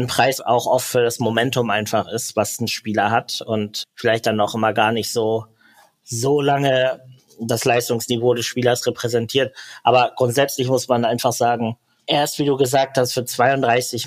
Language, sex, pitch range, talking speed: German, male, 110-130 Hz, 175 wpm